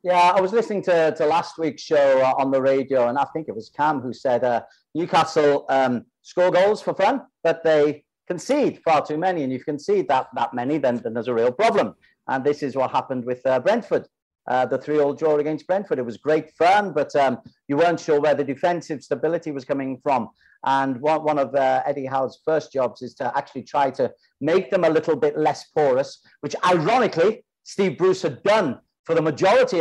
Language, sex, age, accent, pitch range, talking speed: English, male, 40-59, British, 135-175 Hz, 215 wpm